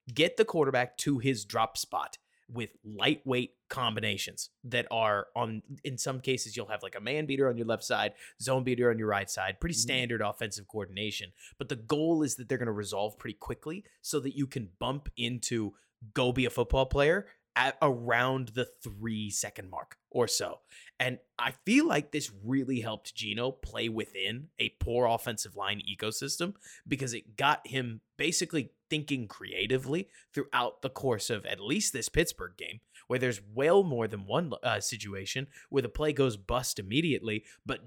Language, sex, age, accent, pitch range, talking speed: English, male, 20-39, American, 110-135 Hz, 175 wpm